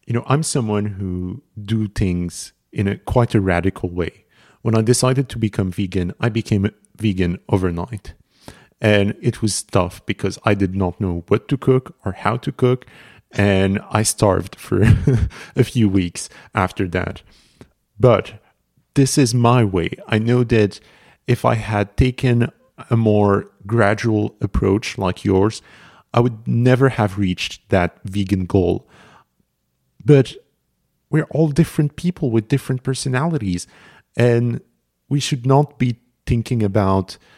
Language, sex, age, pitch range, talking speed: English, male, 50-69, 95-120 Hz, 145 wpm